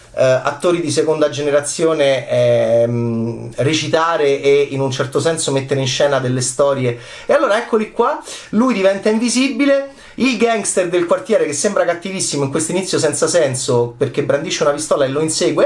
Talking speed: 165 wpm